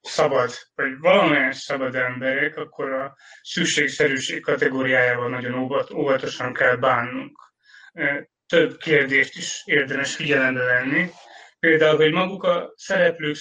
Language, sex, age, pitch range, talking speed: Hungarian, male, 30-49, 140-185 Hz, 105 wpm